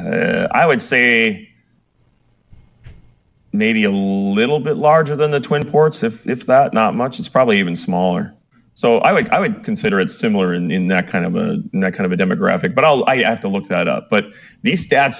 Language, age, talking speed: English, 30-49, 210 wpm